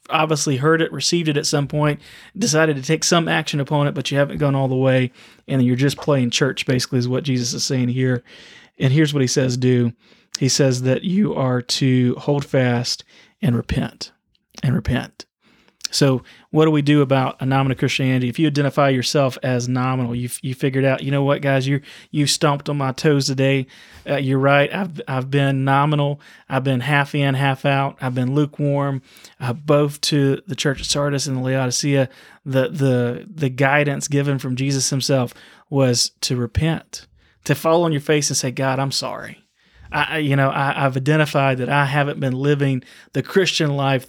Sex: male